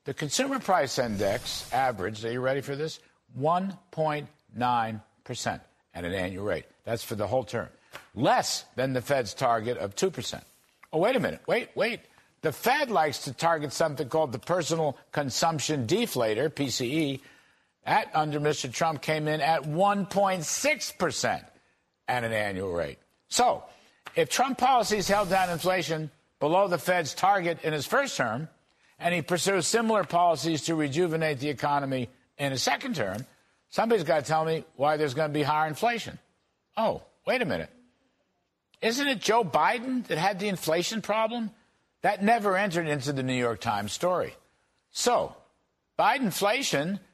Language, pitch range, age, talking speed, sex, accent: English, 140-190 Hz, 60-79, 155 wpm, male, American